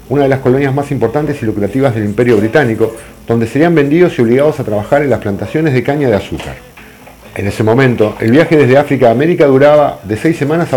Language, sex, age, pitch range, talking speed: English, male, 50-69, 110-145 Hz, 215 wpm